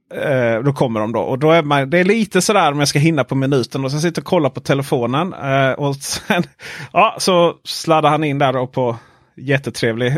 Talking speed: 210 wpm